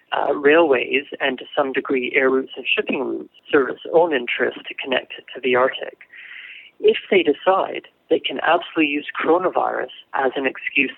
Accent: American